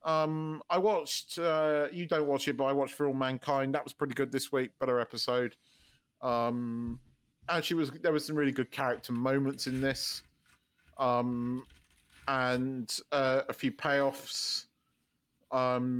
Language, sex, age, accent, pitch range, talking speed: English, male, 40-59, British, 125-160 Hz, 155 wpm